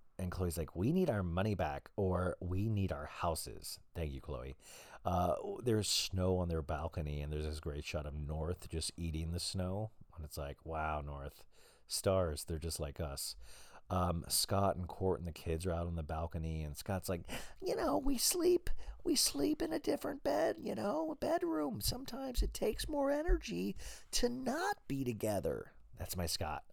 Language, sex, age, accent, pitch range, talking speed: English, male, 40-59, American, 80-100 Hz, 190 wpm